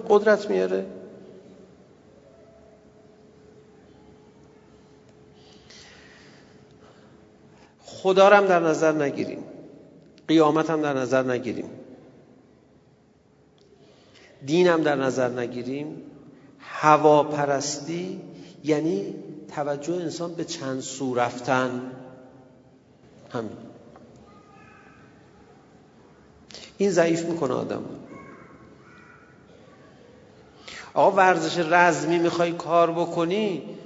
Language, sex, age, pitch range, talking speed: Persian, male, 50-69, 125-170 Hz, 60 wpm